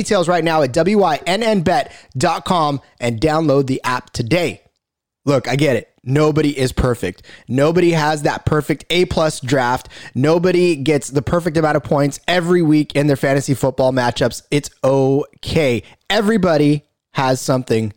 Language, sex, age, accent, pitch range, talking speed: English, male, 20-39, American, 125-165 Hz, 140 wpm